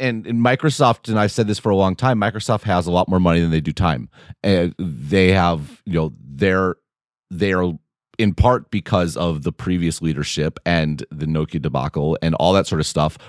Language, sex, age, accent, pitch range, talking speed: English, male, 30-49, American, 85-110 Hz, 205 wpm